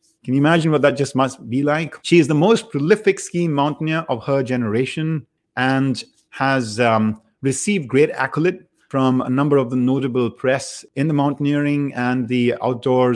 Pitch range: 120-145 Hz